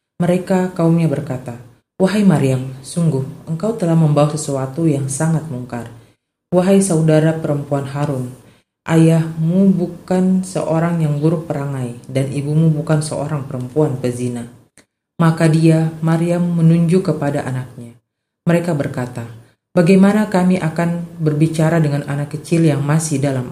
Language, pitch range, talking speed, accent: Indonesian, 135-165 Hz, 120 wpm, native